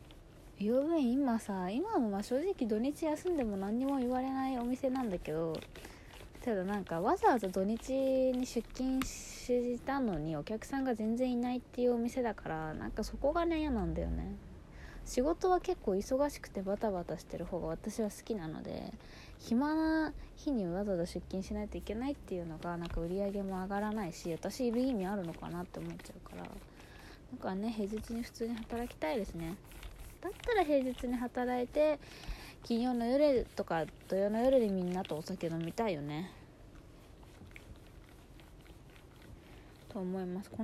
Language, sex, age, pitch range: Japanese, female, 20-39, 185-260 Hz